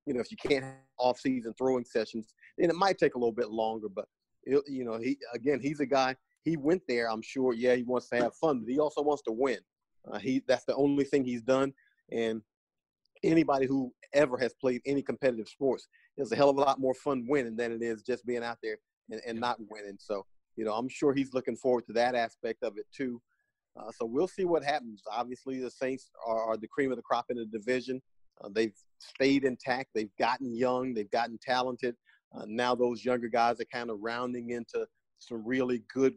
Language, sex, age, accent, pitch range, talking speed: English, male, 40-59, American, 115-135 Hz, 225 wpm